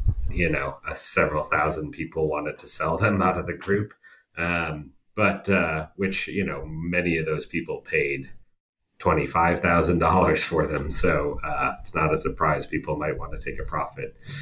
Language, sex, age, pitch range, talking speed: English, male, 30-49, 80-95 Hz, 170 wpm